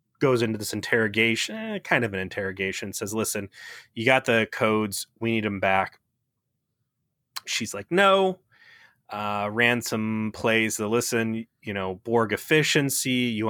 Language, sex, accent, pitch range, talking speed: English, male, American, 105-125 Hz, 140 wpm